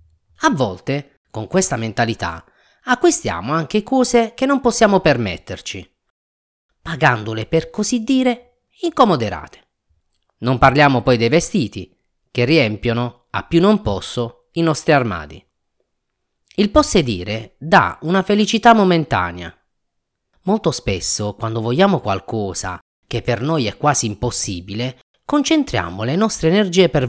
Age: 30-49